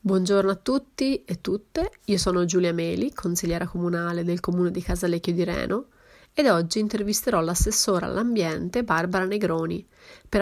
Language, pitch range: Italian, 180-220 Hz